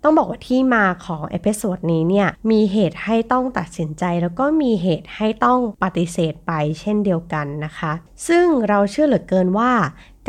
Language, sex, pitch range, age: Thai, female, 175-235 Hz, 20-39